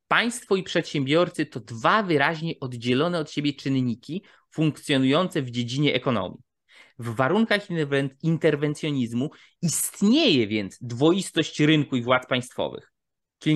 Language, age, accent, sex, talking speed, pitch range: Polish, 20-39, native, male, 110 wpm, 135-170 Hz